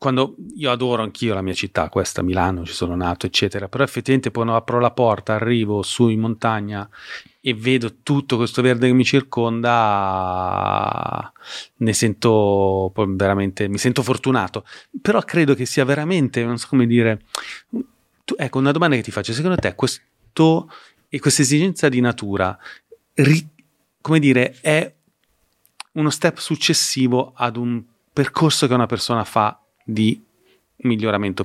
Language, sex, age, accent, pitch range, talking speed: Italian, male, 30-49, native, 100-130 Hz, 150 wpm